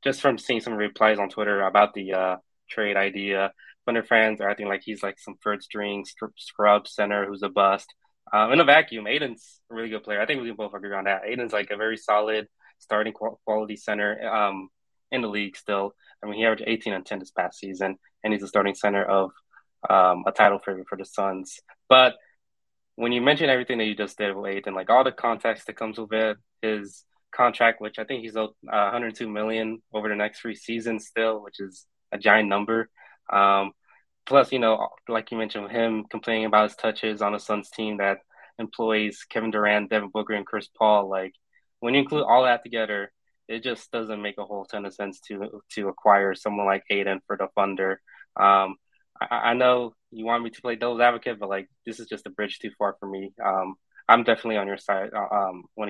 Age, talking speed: 20-39, 220 wpm